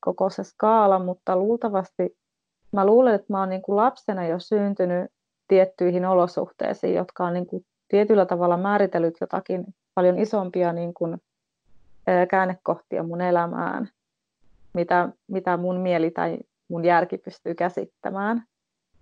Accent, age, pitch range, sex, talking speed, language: native, 30-49, 175-195 Hz, female, 130 wpm, Finnish